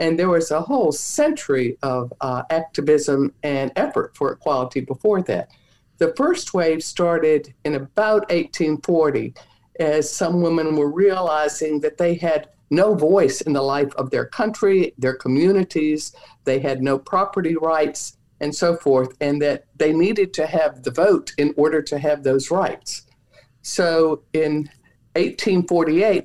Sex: female